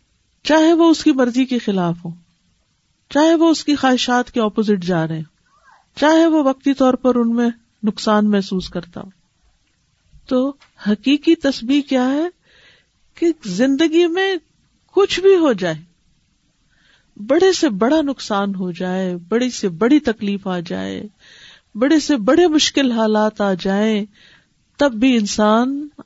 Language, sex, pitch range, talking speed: Urdu, female, 215-305 Hz, 145 wpm